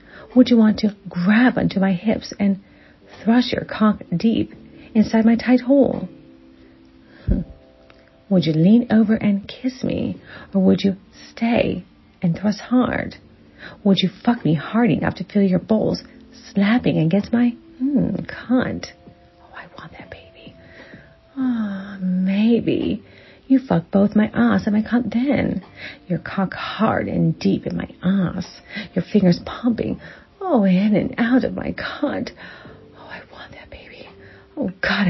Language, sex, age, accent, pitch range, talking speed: English, female, 40-59, American, 185-240 Hz, 150 wpm